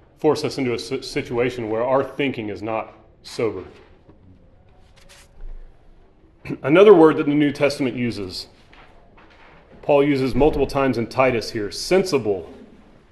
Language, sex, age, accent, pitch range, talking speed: English, male, 30-49, American, 115-150 Hz, 120 wpm